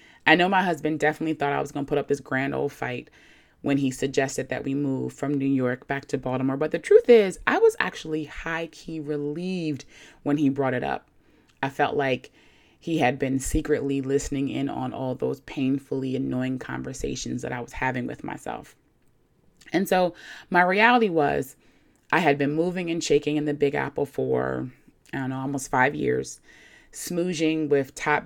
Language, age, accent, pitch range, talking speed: English, 20-39, American, 135-175 Hz, 185 wpm